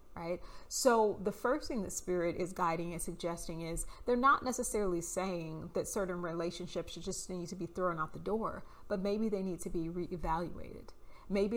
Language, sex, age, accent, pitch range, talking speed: English, female, 30-49, American, 170-195 Hz, 185 wpm